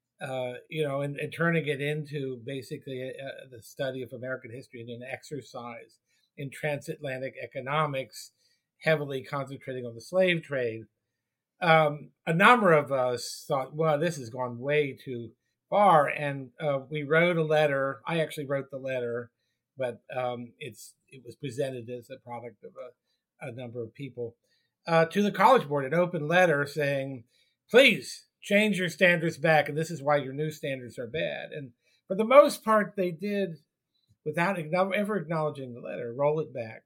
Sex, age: male, 50-69